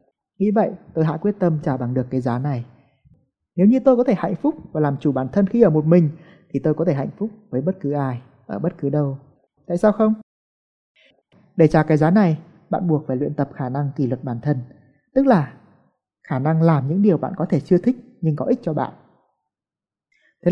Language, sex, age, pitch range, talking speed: Vietnamese, male, 20-39, 140-185 Hz, 230 wpm